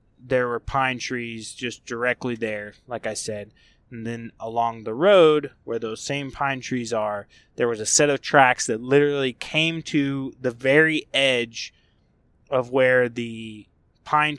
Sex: male